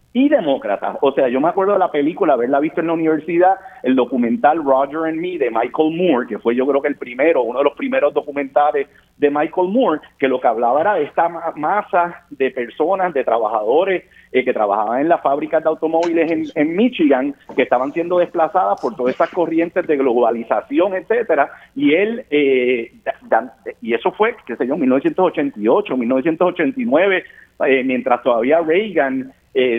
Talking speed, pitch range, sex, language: 180 wpm, 145-205 Hz, male, Spanish